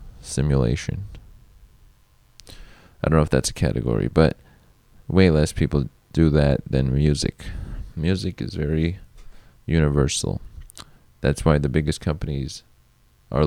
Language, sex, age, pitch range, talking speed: English, male, 20-39, 75-95 Hz, 115 wpm